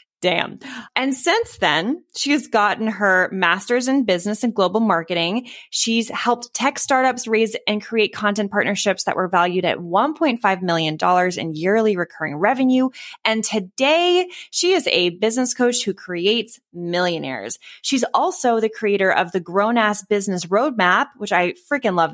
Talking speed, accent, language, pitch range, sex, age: 155 wpm, American, English, 180-240 Hz, female, 20-39